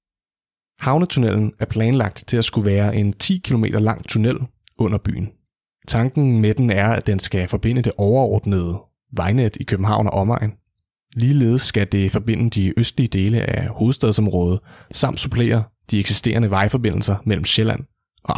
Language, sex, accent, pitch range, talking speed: Danish, male, native, 100-115 Hz, 150 wpm